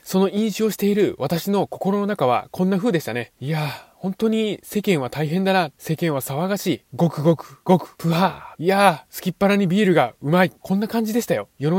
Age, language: 20-39, Japanese